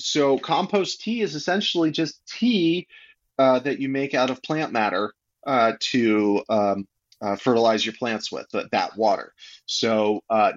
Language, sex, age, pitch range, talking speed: English, male, 30-49, 105-135 Hz, 155 wpm